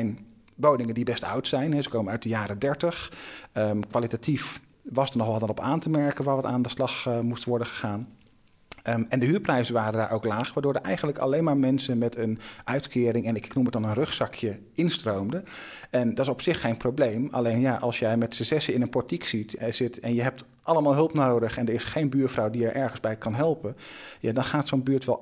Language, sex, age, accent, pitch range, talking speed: Dutch, male, 40-59, Dutch, 115-140 Hz, 225 wpm